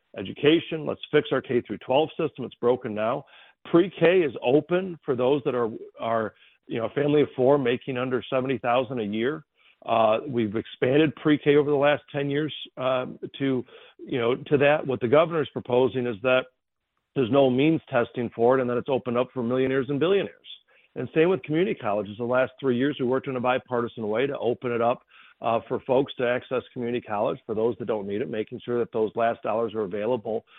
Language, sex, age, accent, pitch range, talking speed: English, male, 50-69, American, 120-140 Hz, 210 wpm